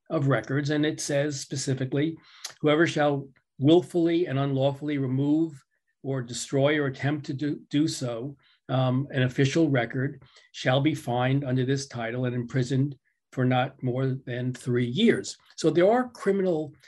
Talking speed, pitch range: 150 wpm, 130-165 Hz